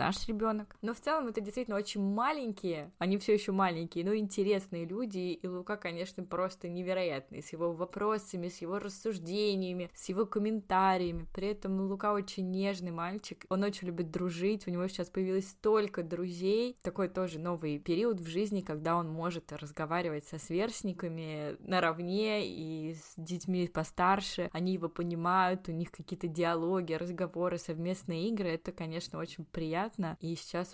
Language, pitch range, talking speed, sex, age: Russian, 165-195 Hz, 150 wpm, female, 20-39